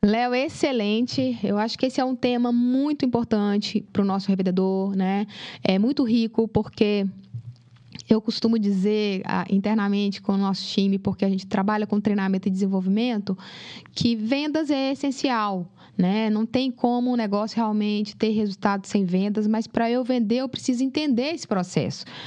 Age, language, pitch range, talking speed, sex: 10-29, Portuguese, 200-235 Hz, 165 wpm, female